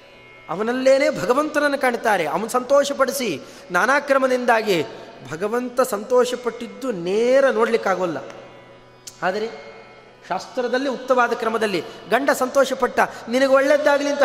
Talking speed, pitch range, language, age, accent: 80 wpm, 180-260 Hz, Kannada, 30-49, native